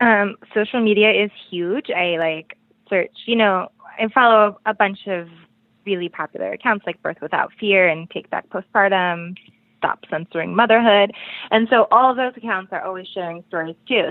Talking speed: 170 wpm